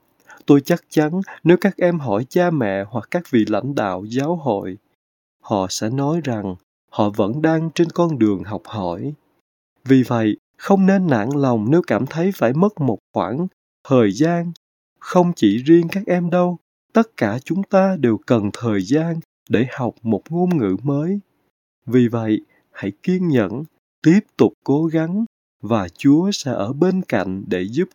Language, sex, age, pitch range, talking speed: Vietnamese, male, 20-39, 110-170 Hz, 170 wpm